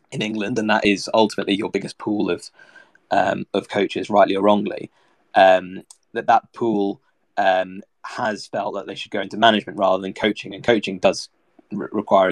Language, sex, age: English, male, 20-39